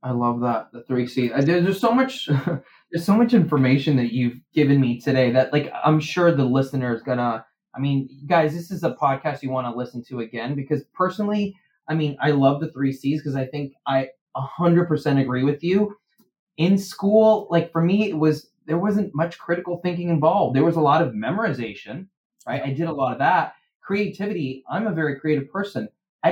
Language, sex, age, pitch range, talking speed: English, male, 20-39, 140-185 Hz, 205 wpm